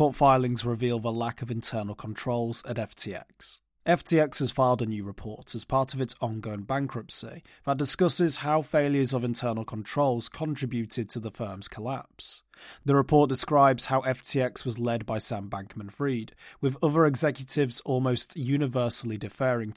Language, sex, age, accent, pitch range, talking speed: English, male, 30-49, British, 120-145 Hz, 150 wpm